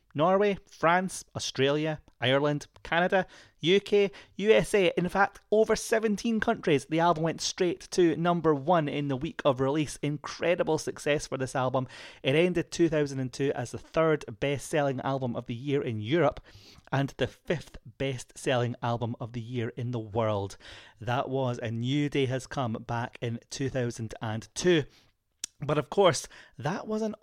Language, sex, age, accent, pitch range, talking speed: English, male, 30-49, British, 120-160 Hz, 150 wpm